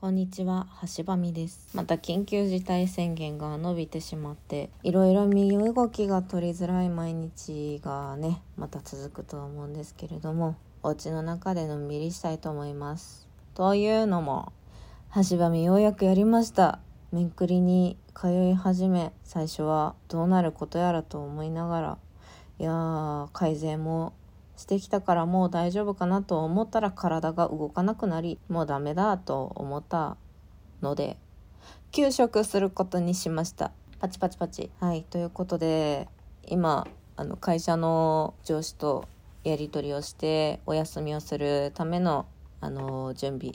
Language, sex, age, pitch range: Japanese, female, 20-39, 150-185 Hz